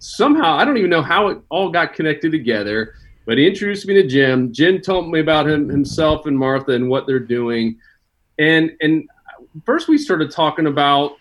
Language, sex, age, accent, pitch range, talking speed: English, male, 30-49, American, 120-155 Hz, 195 wpm